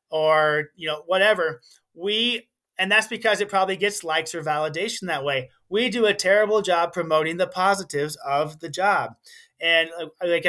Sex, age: male, 30-49